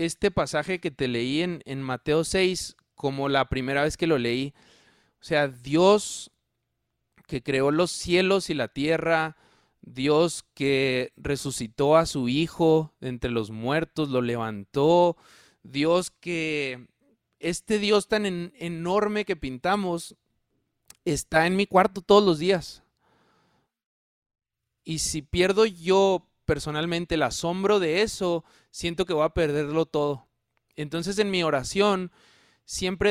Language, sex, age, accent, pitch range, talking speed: Spanish, male, 30-49, Mexican, 140-185 Hz, 130 wpm